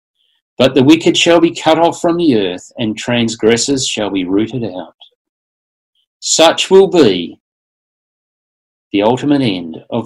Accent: Australian